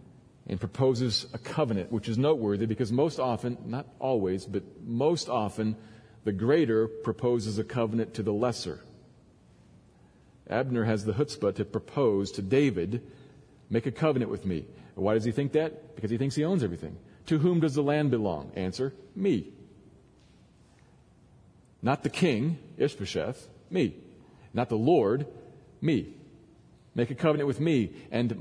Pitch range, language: 110-135 Hz, English